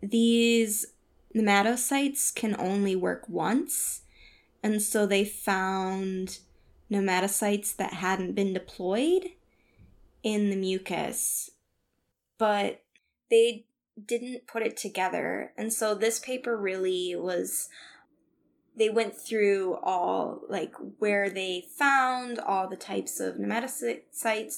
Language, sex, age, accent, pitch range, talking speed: English, female, 10-29, American, 190-250 Hz, 105 wpm